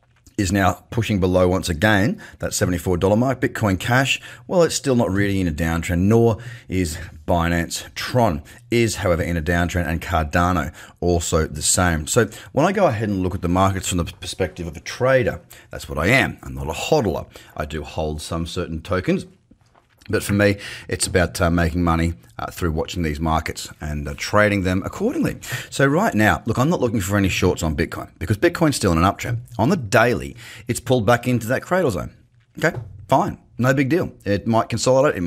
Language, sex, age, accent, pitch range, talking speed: English, male, 30-49, Australian, 90-120 Hz, 200 wpm